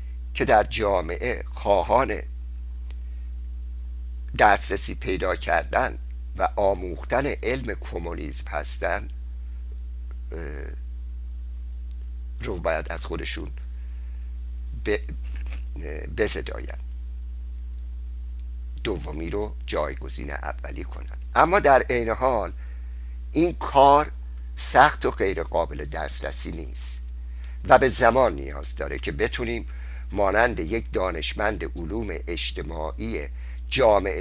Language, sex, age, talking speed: Persian, male, 60-79, 80 wpm